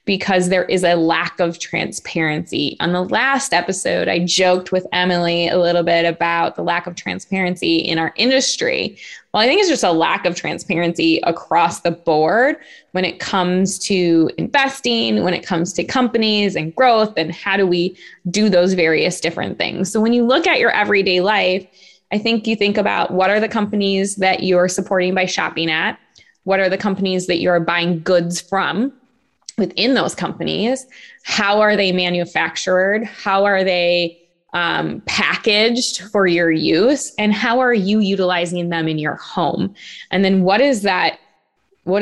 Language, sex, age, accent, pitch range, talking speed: English, female, 20-39, American, 170-205 Hz, 175 wpm